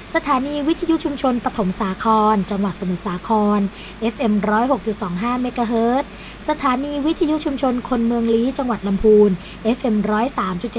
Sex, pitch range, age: female, 210-260 Hz, 20-39